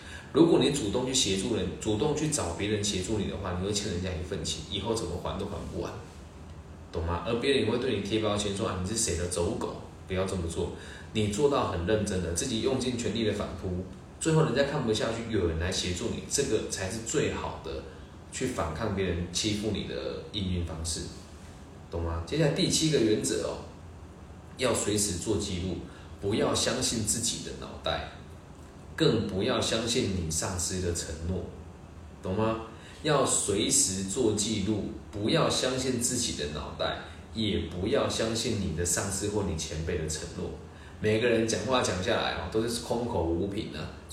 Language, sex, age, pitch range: Chinese, male, 20-39, 85-110 Hz